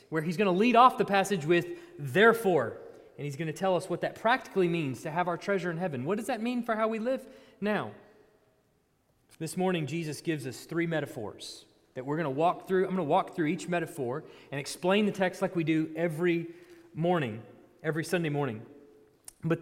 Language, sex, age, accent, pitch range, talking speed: English, male, 30-49, American, 160-225 Hz, 210 wpm